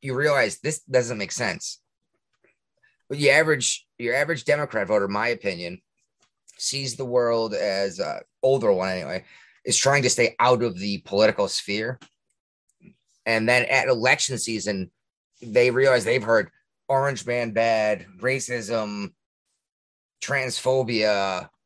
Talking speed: 130 wpm